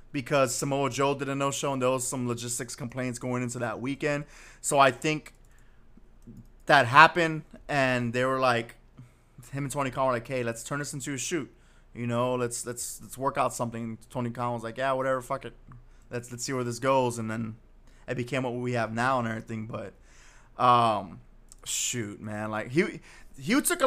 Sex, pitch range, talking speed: male, 120-140 Hz, 200 wpm